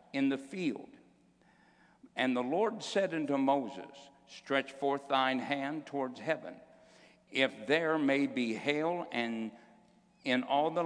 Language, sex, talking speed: English, male, 125 wpm